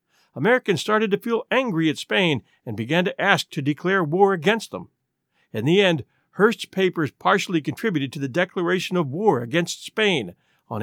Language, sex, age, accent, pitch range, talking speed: English, male, 50-69, American, 155-210 Hz, 170 wpm